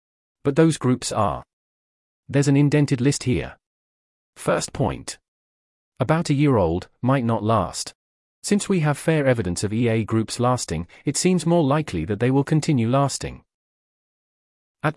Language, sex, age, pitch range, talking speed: English, male, 40-59, 95-140 Hz, 150 wpm